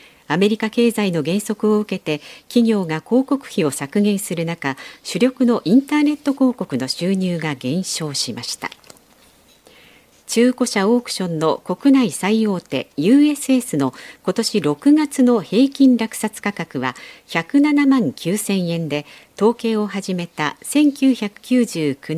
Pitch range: 155-240 Hz